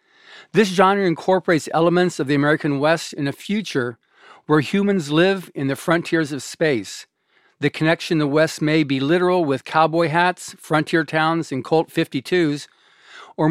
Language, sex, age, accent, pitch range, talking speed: English, male, 50-69, American, 145-175 Hz, 155 wpm